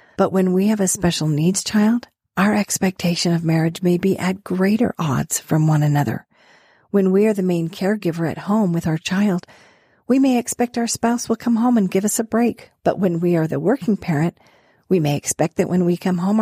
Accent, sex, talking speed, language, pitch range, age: American, female, 215 wpm, English, 170-210 Hz, 50-69